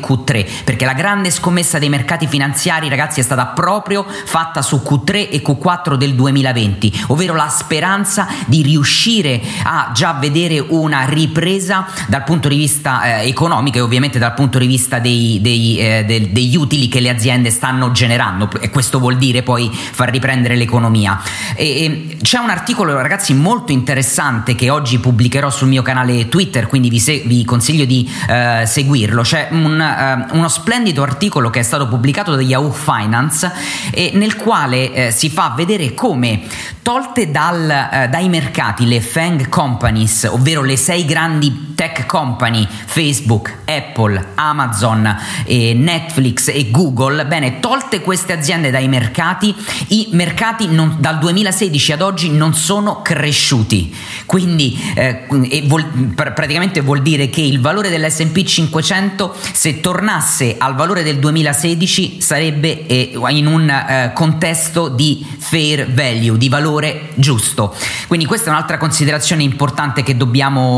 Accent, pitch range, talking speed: native, 125-165 Hz, 140 wpm